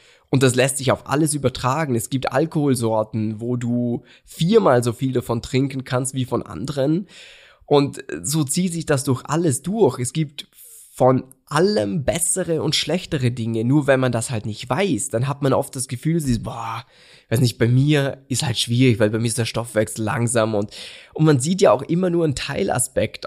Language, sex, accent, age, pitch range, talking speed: German, male, German, 20-39, 120-150 Hz, 200 wpm